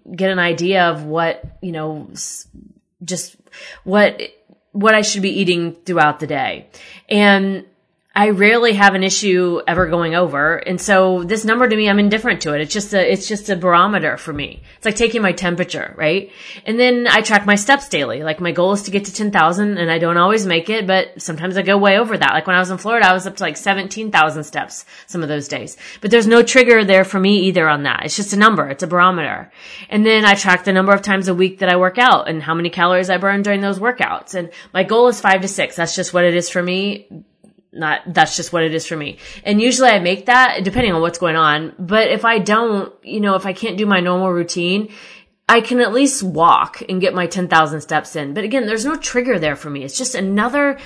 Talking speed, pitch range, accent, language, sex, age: 240 wpm, 175-215 Hz, American, English, female, 30-49